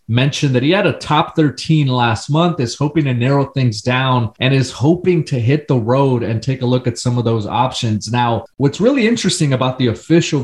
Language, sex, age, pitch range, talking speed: English, male, 30-49, 120-140 Hz, 220 wpm